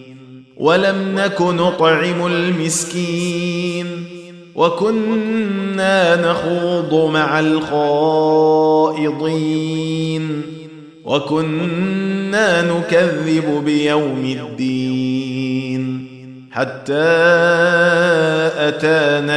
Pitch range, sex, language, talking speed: 135-165 Hz, male, Arabic, 45 wpm